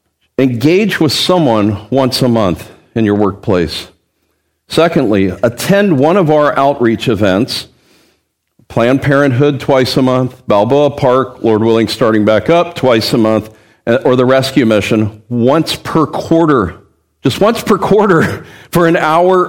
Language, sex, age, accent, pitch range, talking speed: English, male, 50-69, American, 110-155 Hz, 140 wpm